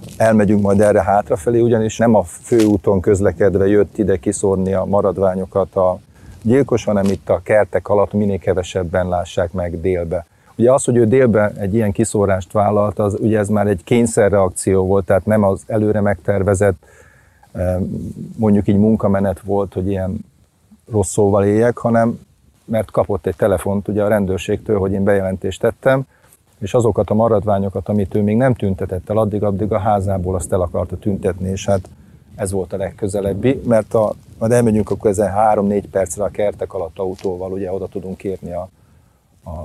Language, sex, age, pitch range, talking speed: Hungarian, male, 40-59, 95-110 Hz, 165 wpm